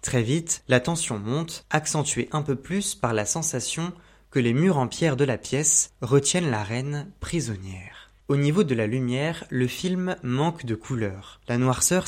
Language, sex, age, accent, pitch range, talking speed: French, male, 20-39, French, 115-150 Hz, 180 wpm